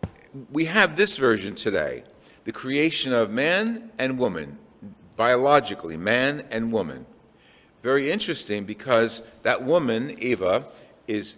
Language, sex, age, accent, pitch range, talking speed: English, male, 50-69, American, 110-155 Hz, 115 wpm